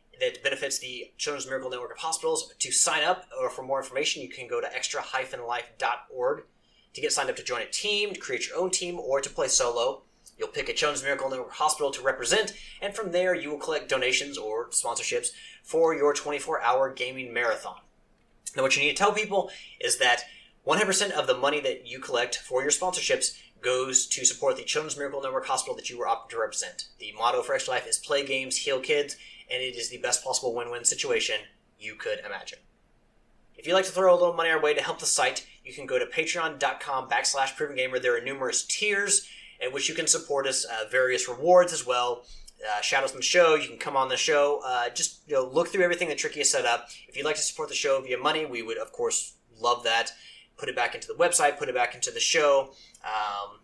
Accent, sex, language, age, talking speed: American, male, English, 30-49, 225 wpm